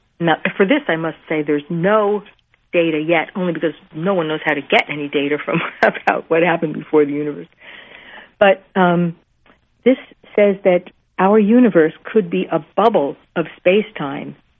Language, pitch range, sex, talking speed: English, 160-230 Hz, female, 165 wpm